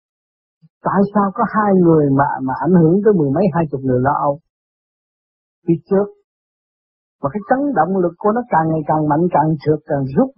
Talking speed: 195 wpm